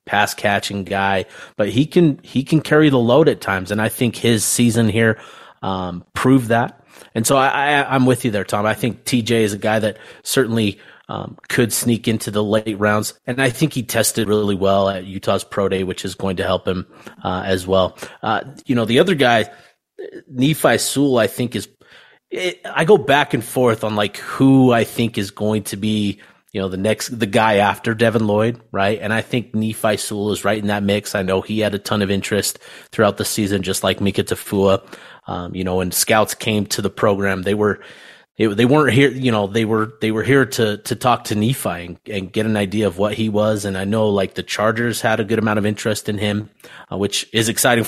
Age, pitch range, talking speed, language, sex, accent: 30-49, 100-125 Hz, 225 wpm, English, male, American